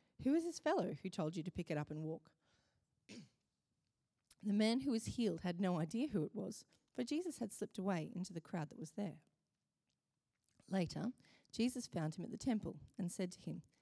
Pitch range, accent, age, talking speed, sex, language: 170-230 Hz, Australian, 30-49, 200 wpm, female, English